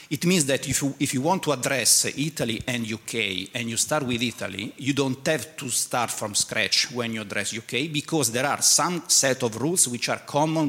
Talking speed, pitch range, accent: 215 wpm, 120-150 Hz, Italian